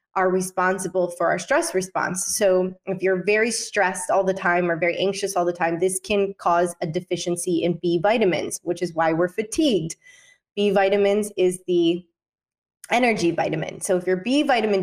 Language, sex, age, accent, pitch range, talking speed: English, female, 20-39, American, 180-210 Hz, 180 wpm